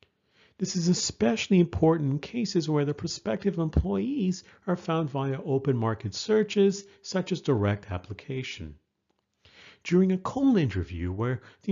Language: English